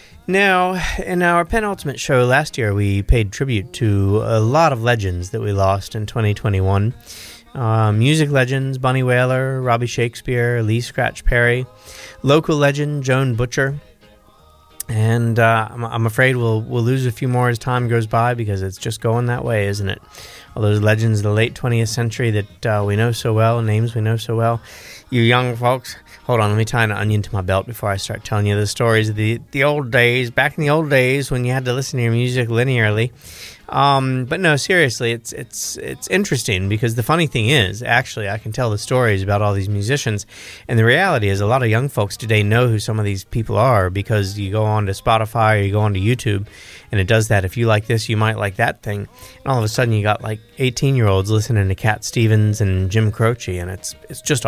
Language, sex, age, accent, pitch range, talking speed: English, male, 20-39, American, 105-125 Hz, 220 wpm